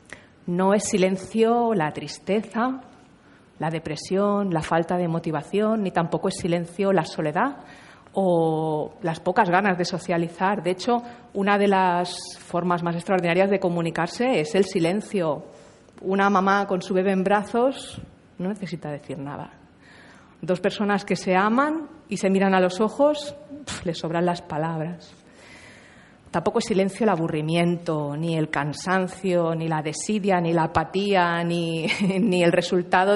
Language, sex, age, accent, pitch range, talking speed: Spanish, female, 40-59, Spanish, 165-200 Hz, 145 wpm